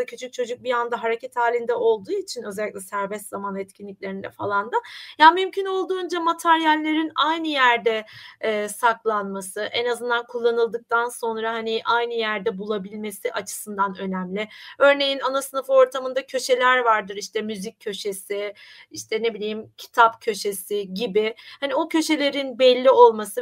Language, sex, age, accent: Turkish, female, 30-49, native